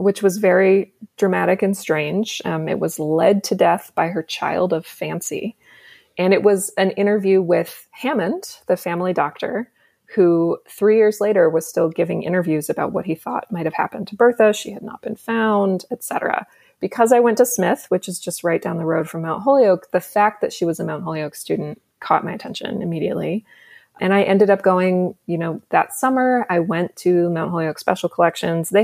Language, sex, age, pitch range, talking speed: English, female, 20-39, 170-205 Hz, 200 wpm